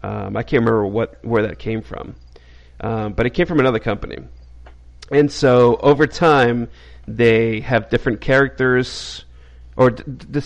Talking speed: 155 wpm